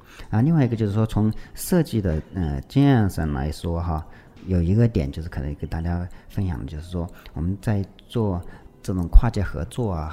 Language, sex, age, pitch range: Chinese, male, 40-59, 85-105 Hz